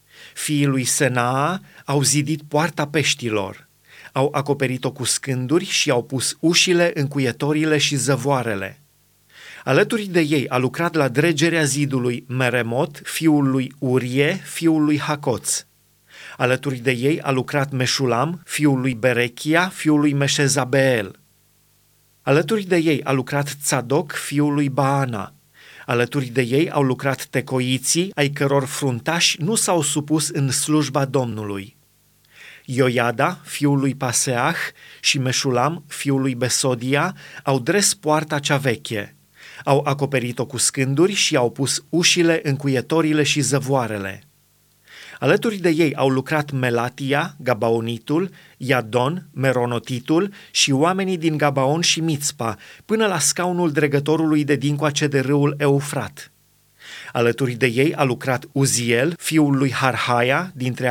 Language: Romanian